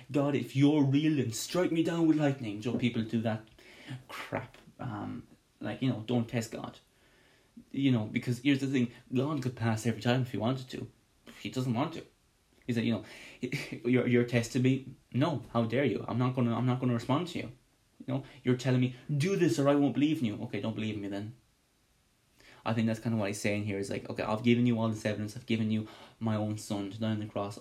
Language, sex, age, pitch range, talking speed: English, male, 20-39, 105-125 Hz, 235 wpm